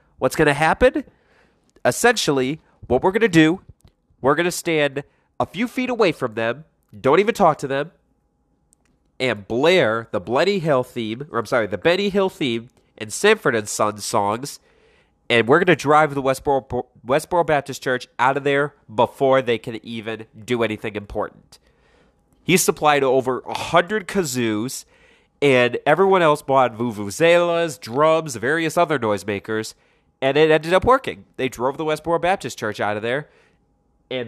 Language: English